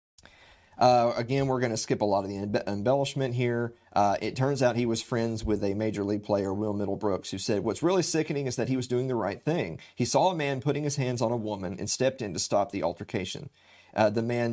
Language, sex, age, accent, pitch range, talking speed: English, male, 40-59, American, 105-140 Hz, 250 wpm